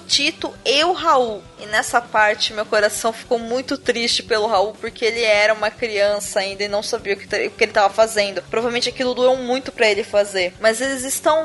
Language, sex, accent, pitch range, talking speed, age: Portuguese, female, Brazilian, 225-290 Hz, 200 wpm, 20-39